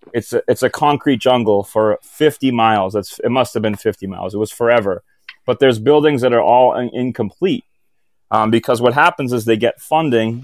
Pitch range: 110-125 Hz